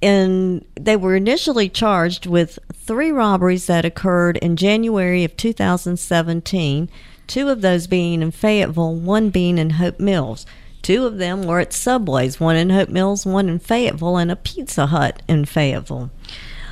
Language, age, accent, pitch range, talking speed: English, 50-69, American, 175-220 Hz, 160 wpm